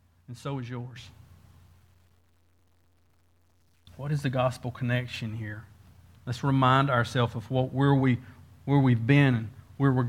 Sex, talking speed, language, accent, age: male, 135 wpm, English, American, 50-69